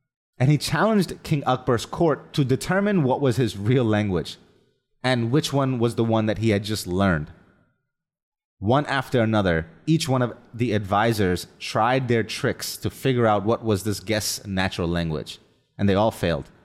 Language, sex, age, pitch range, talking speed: English, male, 30-49, 105-145 Hz, 175 wpm